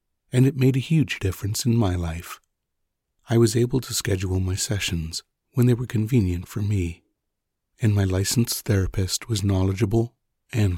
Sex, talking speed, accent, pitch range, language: male, 160 wpm, American, 90-120 Hz, English